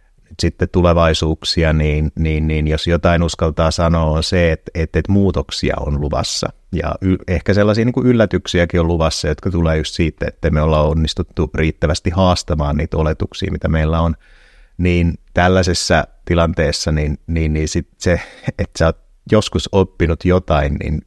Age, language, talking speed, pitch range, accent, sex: 30-49, Finnish, 155 wpm, 80-90 Hz, native, male